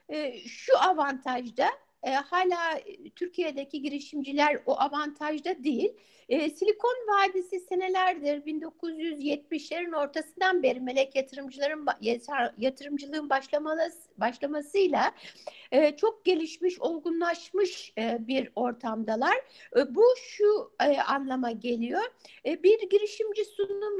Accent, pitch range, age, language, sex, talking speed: native, 285-400 Hz, 60-79, Turkish, female, 100 wpm